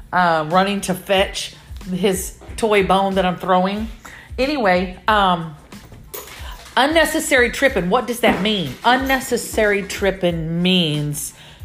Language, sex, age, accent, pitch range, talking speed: English, female, 40-59, American, 170-230 Hz, 110 wpm